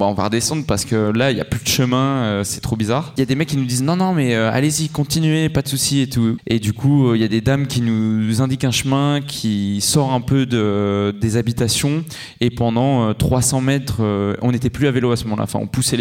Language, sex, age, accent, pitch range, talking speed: French, male, 20-39, French, 110-130 Hz, 265 wpm